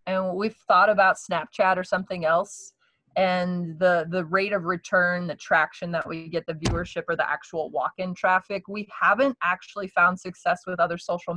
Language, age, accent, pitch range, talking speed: English, 20-39, American, 160-200 Hz, 180 wpm